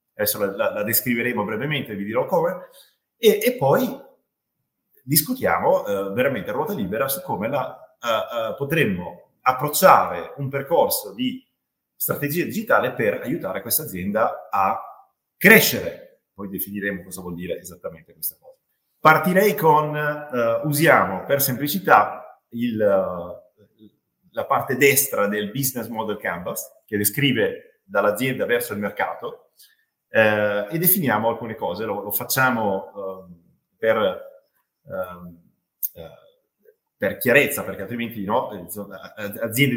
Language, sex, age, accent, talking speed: Italian, male, 30-49, native, 120 wpm